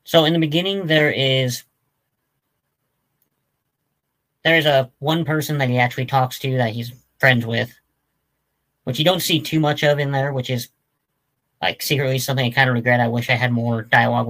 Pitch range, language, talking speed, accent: 125-145 Hz, English, 185 wpm, American